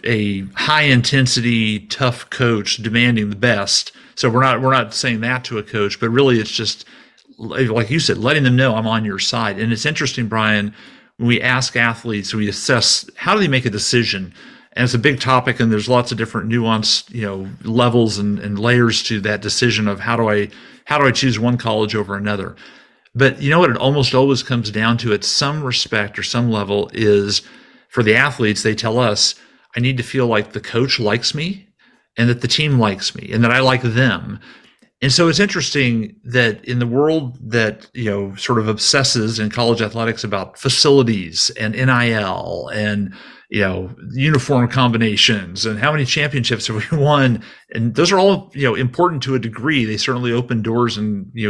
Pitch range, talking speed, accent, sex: 105-130 Hz, 200 wpm, American, male